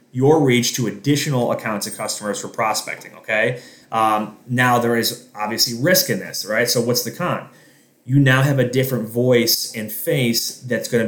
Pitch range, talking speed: 115-135 Hz, 180 wpm